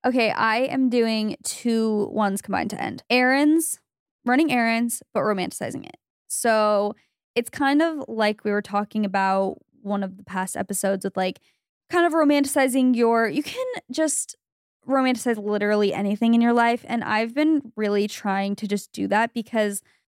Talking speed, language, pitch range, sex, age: 160 wpm, English, 210-255 Hz, female, 10-29